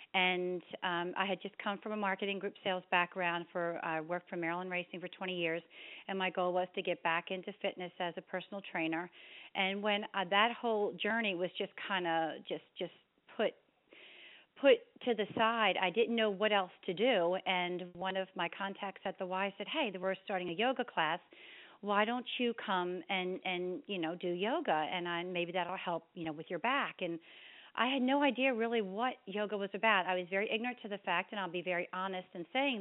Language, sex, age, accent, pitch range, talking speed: English, female, 40-59, American, 185-220 Hz, 215 wpm